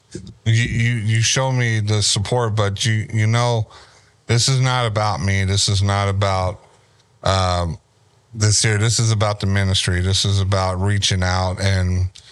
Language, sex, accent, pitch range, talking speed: English, male, American, 100-125 Hz, 165 wpm